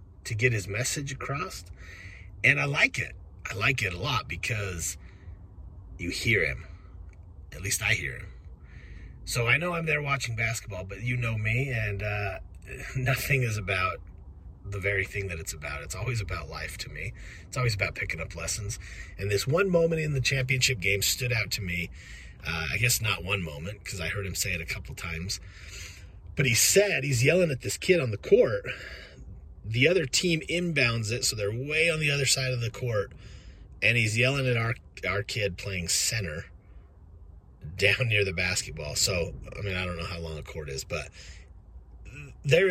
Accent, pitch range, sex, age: American, 85-125 Hz, male, 30-49